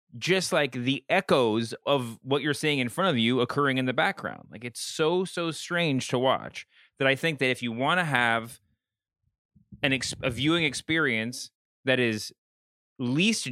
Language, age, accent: English, 20-39, American